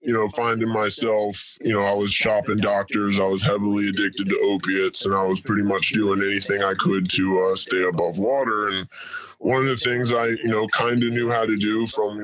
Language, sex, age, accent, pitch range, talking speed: English, female, 10-29, American, 95-115 Hz, 225 wpm